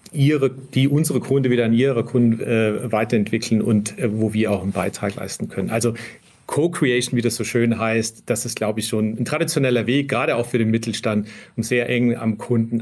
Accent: German